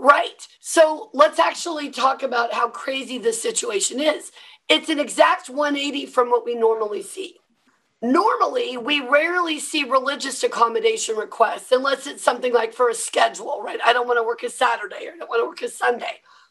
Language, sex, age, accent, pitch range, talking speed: English, female, 40-59, American, 255-380 Hz, 180 wpm